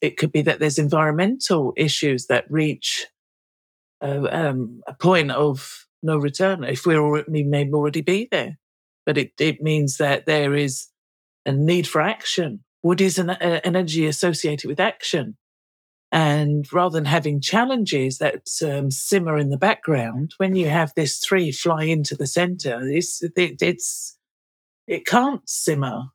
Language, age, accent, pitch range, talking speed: English, 50-69, British, 145-180 Hz, 160 wpm